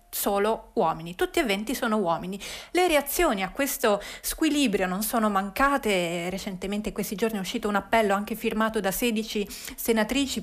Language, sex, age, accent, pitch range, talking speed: Italian, female, 30-49, native, 205-245 Hz, 160 wpm